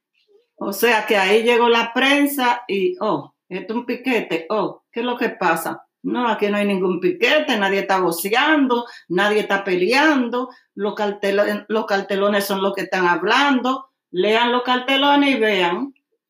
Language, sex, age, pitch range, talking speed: Spanish, female, 50-69, 195-255 Hz, 165 wpm